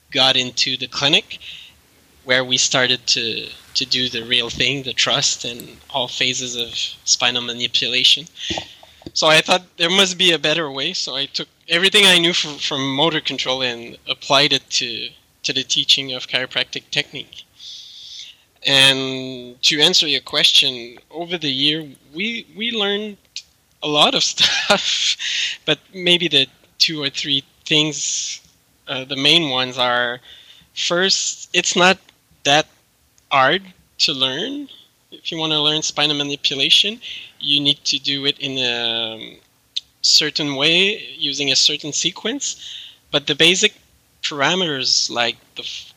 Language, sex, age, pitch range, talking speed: English, male, 20-39, 130-165 Hz, 145 wpm